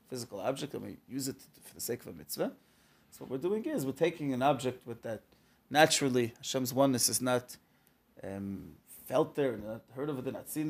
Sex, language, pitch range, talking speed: male, English, 125-165 Hz, 215 wpm